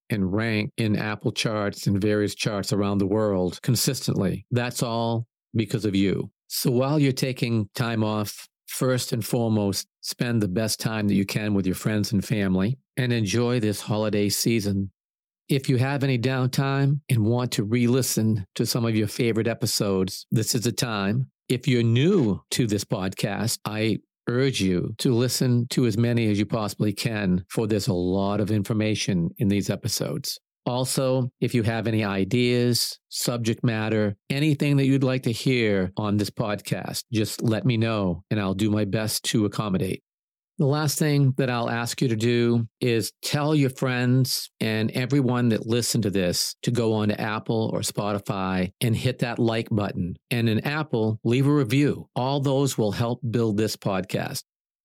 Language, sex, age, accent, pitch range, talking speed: English, male, 50-69, American, 105-130 Hz, 175 wpm